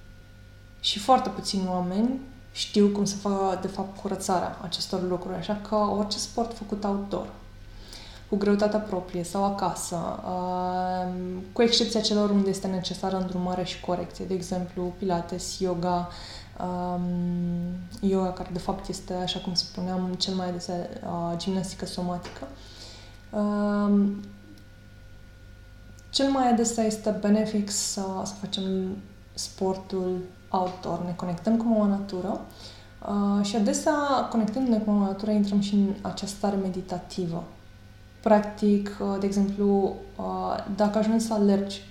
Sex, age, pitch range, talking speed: female, 20-39, 175-205 Hz, 125 wpm